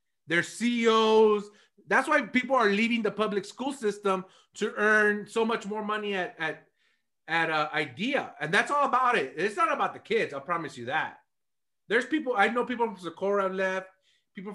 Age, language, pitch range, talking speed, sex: 30-49, English, 180-250 Hz, 190 wpm, male